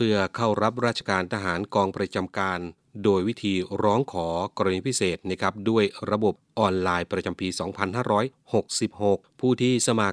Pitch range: 95-110 Hz